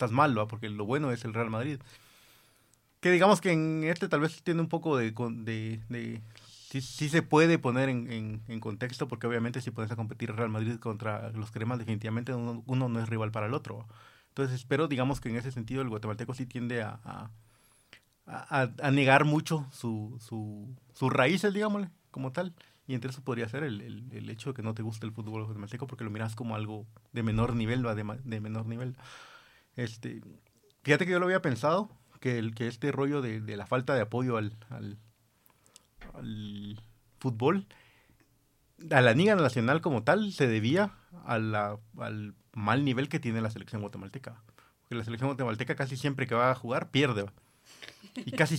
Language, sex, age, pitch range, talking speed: Spanish, male, 30-49, 110-135 Hz, 200 wpm